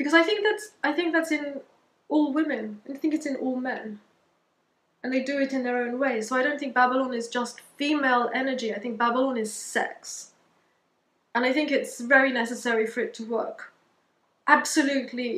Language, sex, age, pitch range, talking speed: English, female, 20-39, 235-285 Hz, 190 wpm